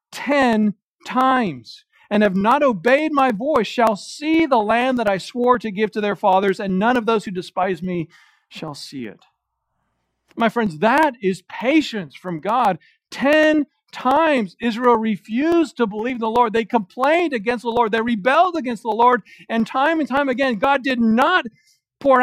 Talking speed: 175 wpm